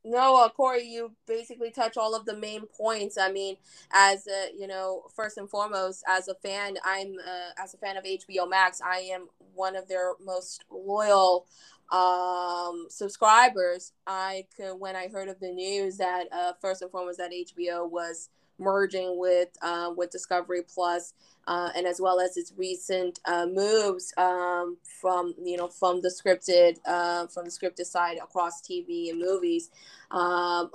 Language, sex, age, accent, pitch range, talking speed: English, female, 20-39, American, 180-210 Hz, 170 wpm